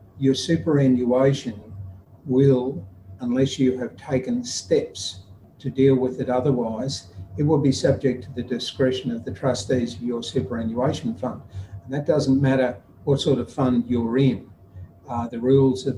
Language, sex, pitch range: English, male, 110-130 Hz